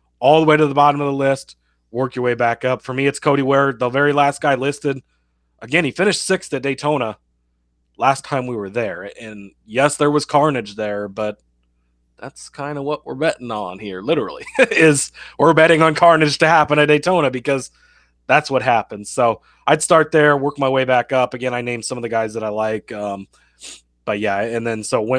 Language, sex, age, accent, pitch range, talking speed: English, male, 30-49, American, 110-145 Hz, 210 wpm